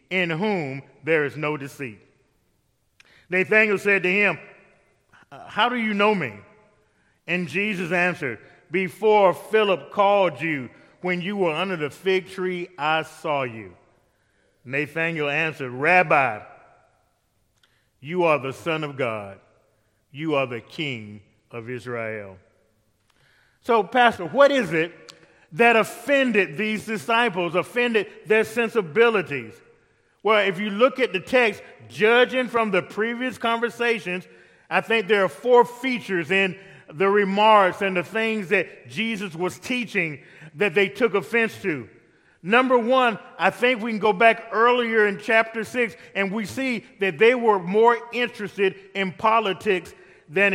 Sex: male